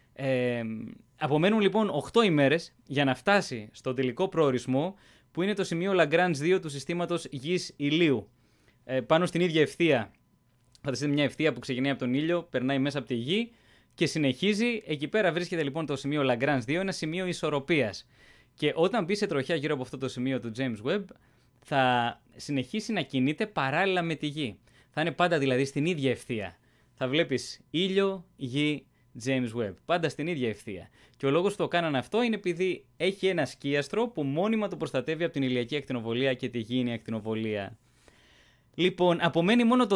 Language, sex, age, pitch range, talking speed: Greek, male, 20-39, 125-175 Hz, 175 wpm